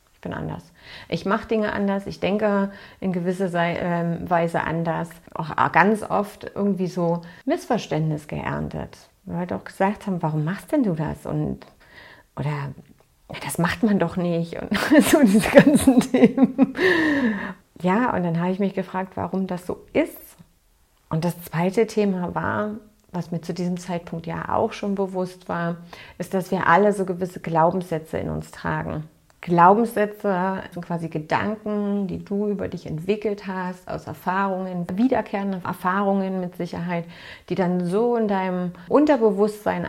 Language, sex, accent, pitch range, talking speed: German, female, German, 170-210 Hz, 150 wpm